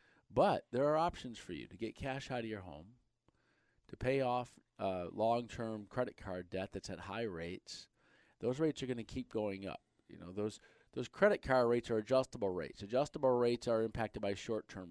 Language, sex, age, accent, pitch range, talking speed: English, male, 40-59, American, 100-130 Hz, 195 wpm